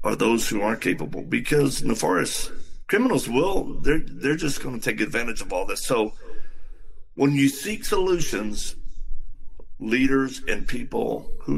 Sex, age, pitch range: male, 50-69, 110-135 Hz